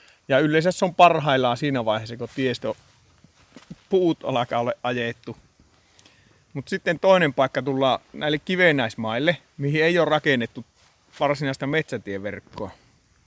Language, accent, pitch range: Finnish, native, 120-150 Hz